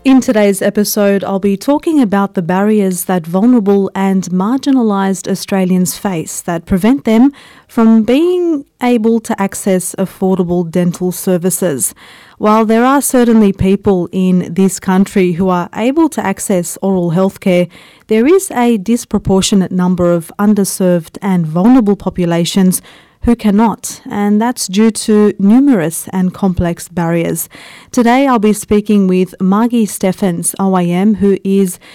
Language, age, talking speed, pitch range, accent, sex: English, 30-49, 135 wpm, 185-225 Hz, Australian, female